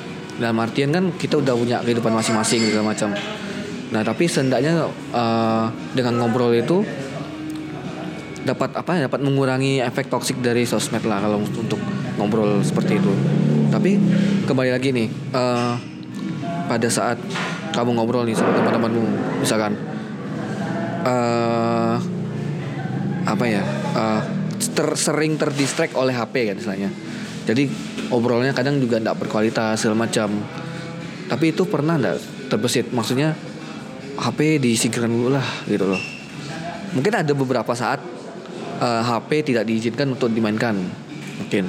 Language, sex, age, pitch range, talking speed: Indonesian, male, 20-39, 115-150 Hz, 125 wpm